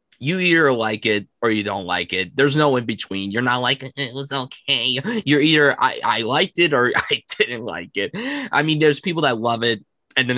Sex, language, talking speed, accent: male, English, 220 wpm, American